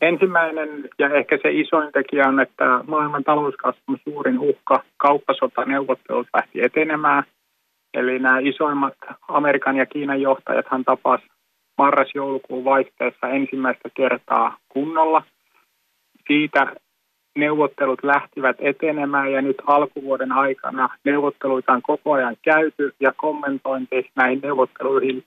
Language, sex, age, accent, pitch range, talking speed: Finnish, male, 30-49, native, 130-150 Hz, 110 wpm